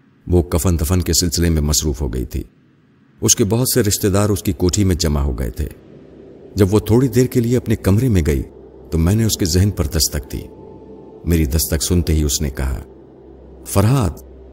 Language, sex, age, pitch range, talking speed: Urdu, male, 50-69, 75-105 Hz, 210 wpm